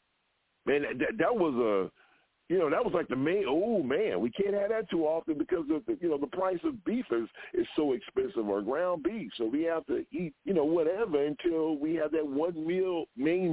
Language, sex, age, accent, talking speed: English, male, 50-69, American, 215 wpm